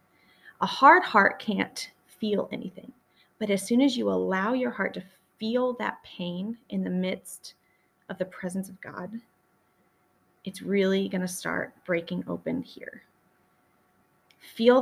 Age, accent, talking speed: 20-39, American, 140 wpm